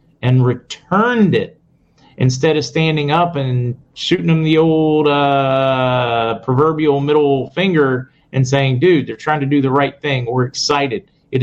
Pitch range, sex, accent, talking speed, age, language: 125-155 Hz, male, American, 150 wpm, 40-59, English